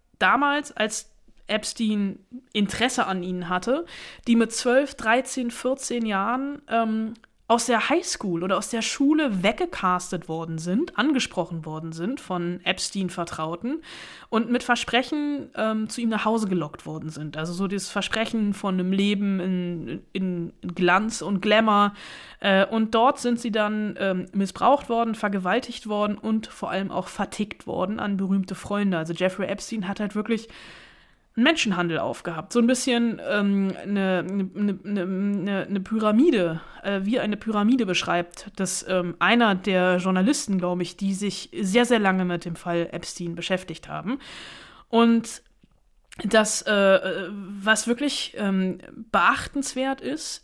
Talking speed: 145 wpm